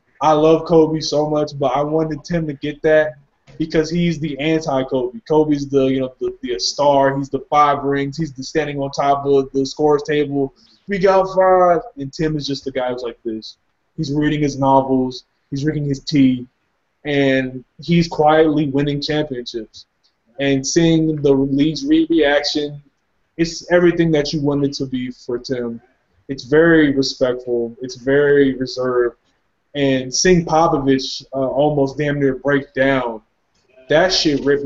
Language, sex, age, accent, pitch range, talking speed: English, male, 20-39, American, 130-150 Hz, 165 wpm